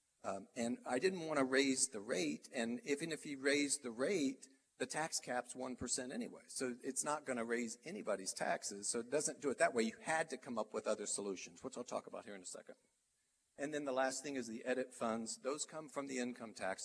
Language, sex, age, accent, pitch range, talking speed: English, male, 50-69, American, 120-150 Hz, 240 wpm